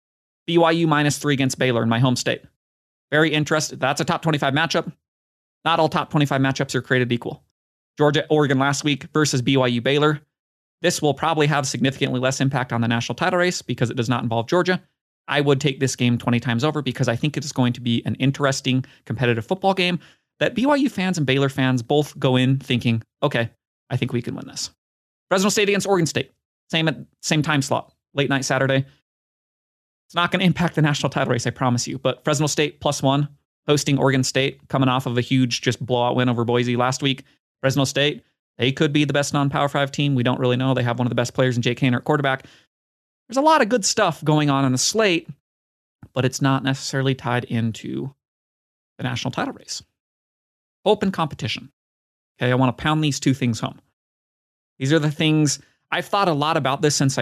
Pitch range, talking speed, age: 125-150 Hz, 210 wpm, 30-49